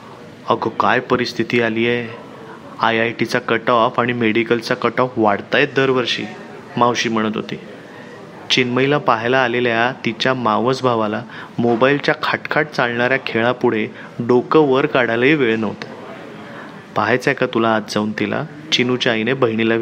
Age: 30-49